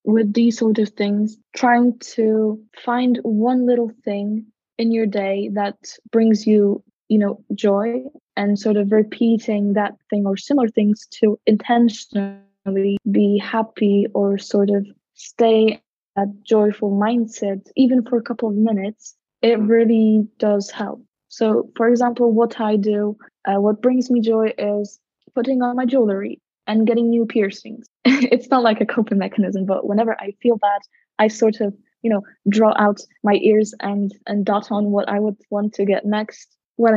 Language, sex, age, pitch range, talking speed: English, female, 20-39, 205-230 Hz, 165 wpm